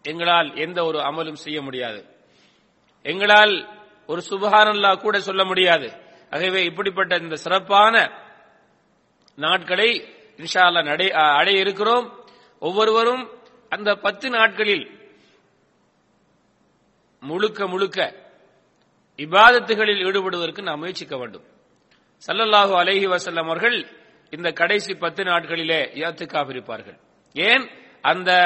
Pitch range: 165-210 Hz